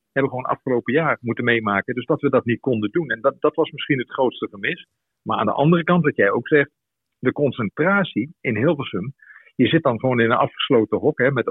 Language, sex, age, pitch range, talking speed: Dutch, male, 50-69, 115-145 Hz, 235 wpm